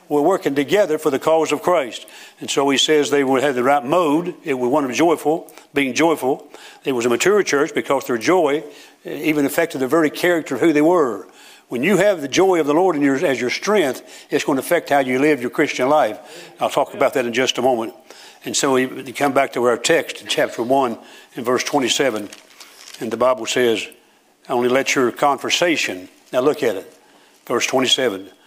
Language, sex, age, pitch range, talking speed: English, male, 60-79, 140-180 Hz, 215 wpm